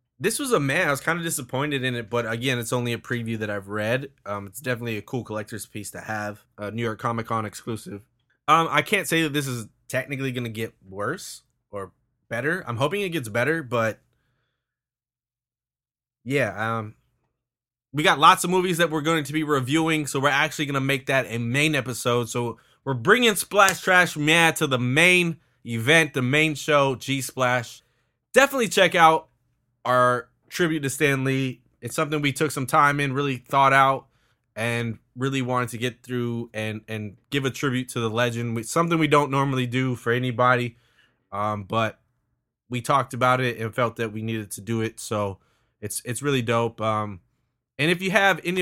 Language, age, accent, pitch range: English, 20-39, American, 120-155 Hz